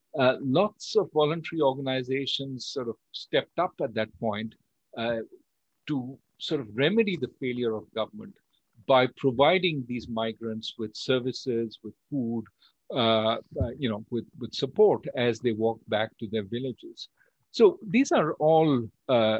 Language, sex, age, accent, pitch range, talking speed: English, male, 50-69, Indian, 115-140 Hz, 150 wpm